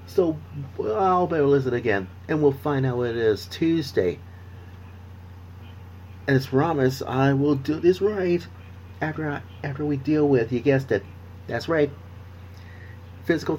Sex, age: male, 30-49